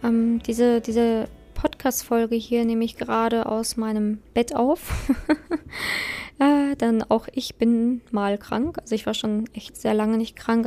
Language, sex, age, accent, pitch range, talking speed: German, female, 20-39, German, 225-255 Hz, 155 wpm